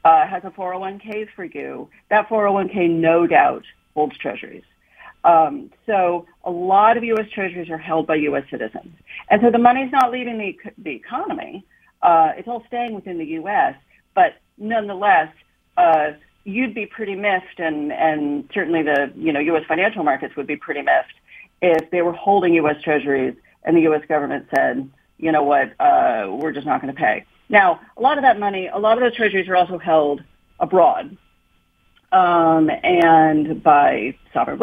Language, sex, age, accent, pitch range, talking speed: English, female, 40-59, American, 155-220 Hz, 175 wpm